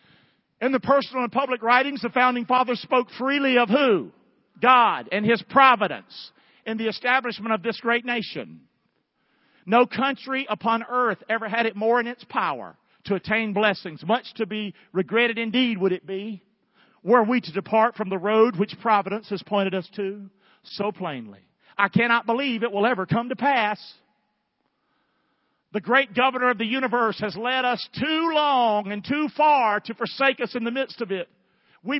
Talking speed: 175 wpm